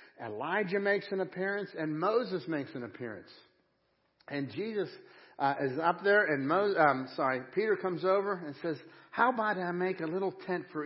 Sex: male